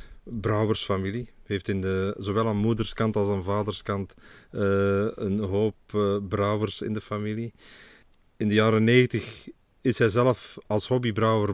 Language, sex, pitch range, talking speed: Dutch, male, 95-110 Hz, 145 wpm